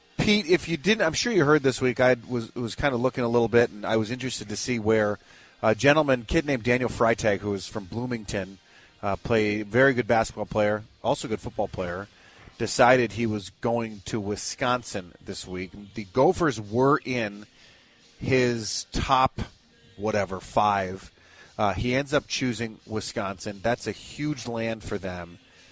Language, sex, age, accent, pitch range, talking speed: English, male, 30-49, American, 110-135 Hz, 175 wpm